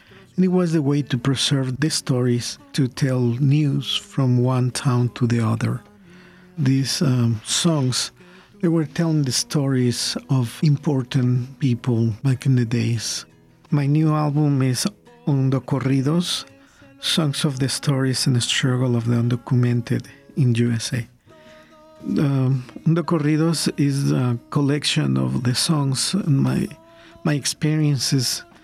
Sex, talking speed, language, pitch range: male, 135 wpm, English, 125-155 Hz